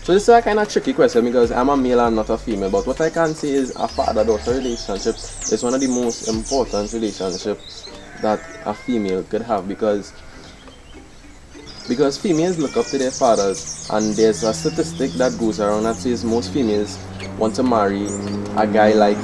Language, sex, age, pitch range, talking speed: English, male, 20-39, 100-120 Hz, 195 wpm